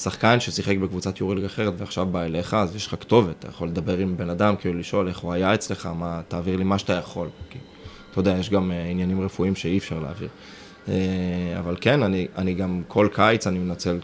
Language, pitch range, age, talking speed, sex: Hebrew, 90-105 Hz, 20-39, 220 wpm, male